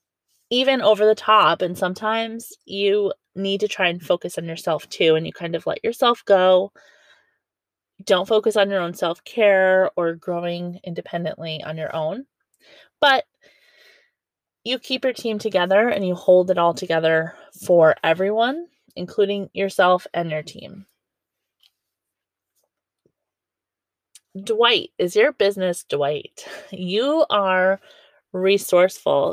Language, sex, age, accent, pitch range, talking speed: English, female, 20-39, American, 175-225 Hz, 125 wpm